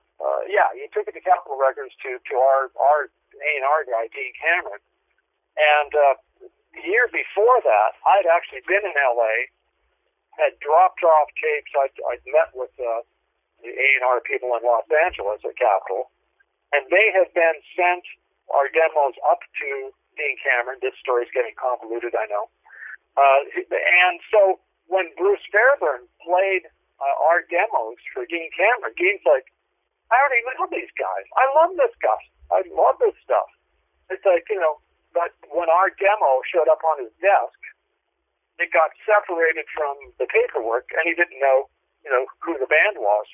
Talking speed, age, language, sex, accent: 165 wpm, 50-69, English, male, American